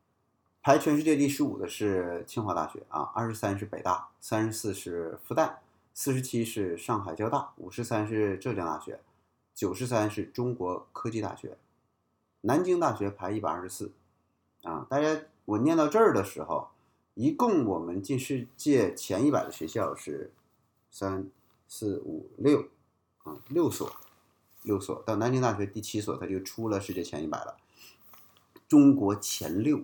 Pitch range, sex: 105-150 Hz, male